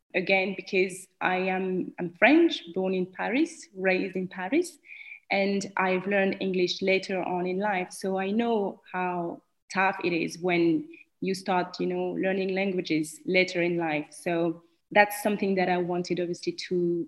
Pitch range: 175-195 Hz